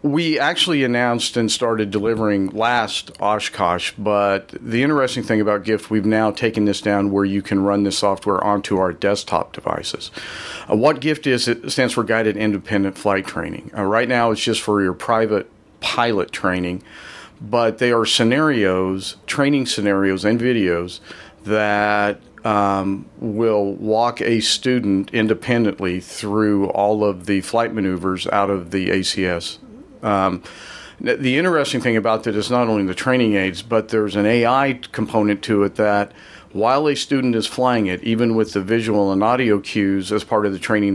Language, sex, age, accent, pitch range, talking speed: English, male, 40-59, American, 100-115 Hz, 165 wpm